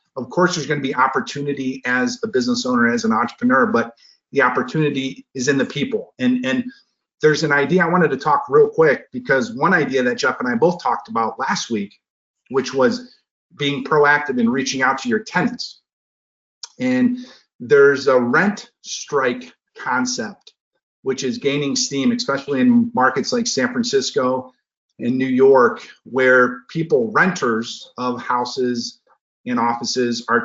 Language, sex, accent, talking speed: English, male, American, 160 wpm